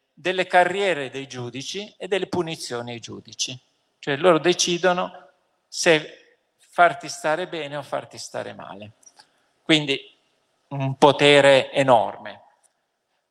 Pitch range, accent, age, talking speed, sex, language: 135-185 Hz, native, 40-59, 110 wpm, male, Italian